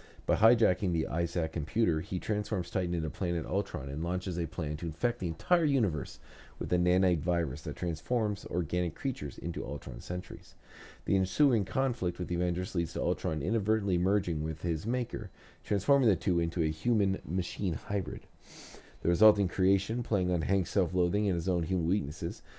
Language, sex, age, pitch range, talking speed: English, male, 40-59, 85-105 Hz, 170 wpm